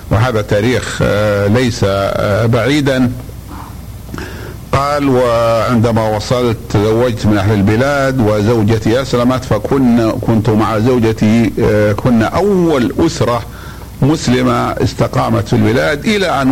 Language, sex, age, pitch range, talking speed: Arabic, male, 60-79, 110-135 Hz, 105 wpm